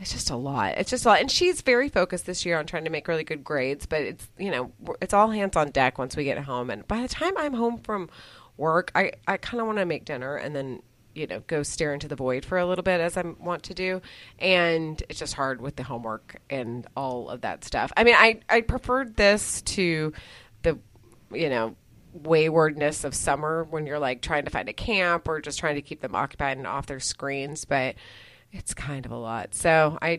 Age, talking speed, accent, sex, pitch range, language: 30-49, 240 wpm, American, female, 140-175 Hz, English